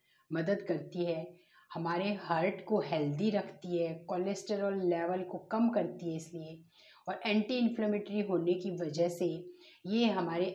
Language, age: Hindi, 30-49